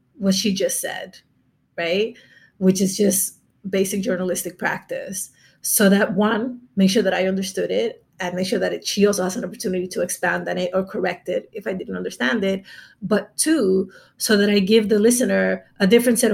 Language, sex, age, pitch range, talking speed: English, female, 30-49, 185-220 Hz, 190 wpm